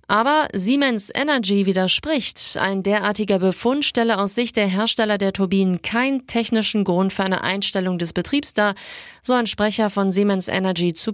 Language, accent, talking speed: German, German, 160 wpm